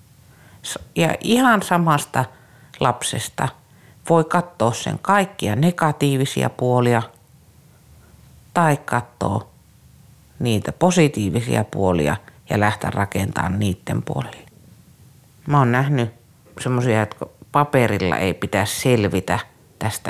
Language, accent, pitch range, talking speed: Finnish, native, 105-135 Hz, 90 wpm